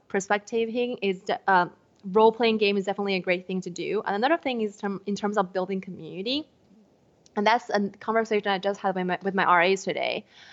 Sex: female